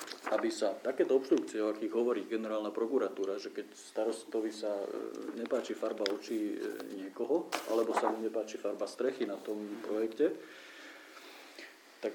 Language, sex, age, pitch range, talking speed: Slovak, male, 40-59, 110-145 Hz, 135 wpm